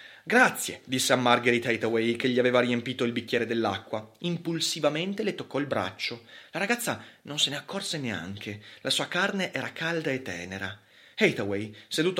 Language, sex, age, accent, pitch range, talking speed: Italian, male, 30-49, native, 115-160 Hz, 160 wpm